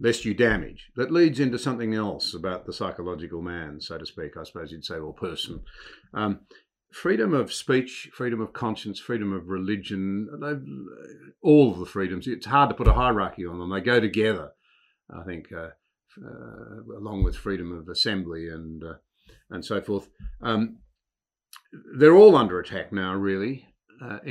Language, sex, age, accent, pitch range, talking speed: English, male, 50-69, Australian, 95-115 Hz, 170 wpm